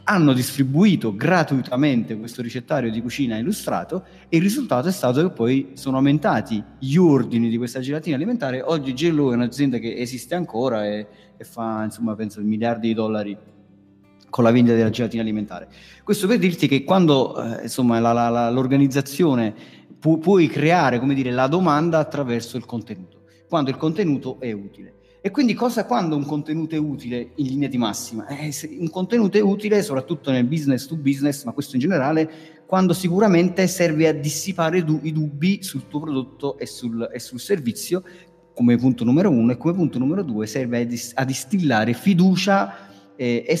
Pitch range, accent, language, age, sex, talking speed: 120-170 Hz, native, Italian, 30-49, male, 170 wpm